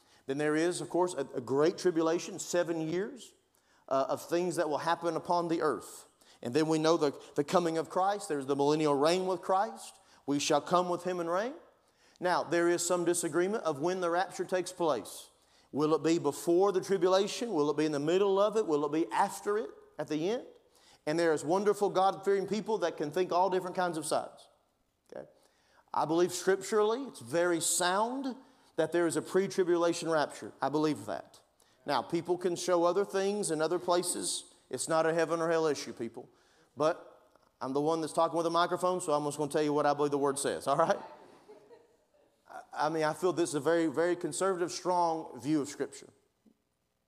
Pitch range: 155-185 Hz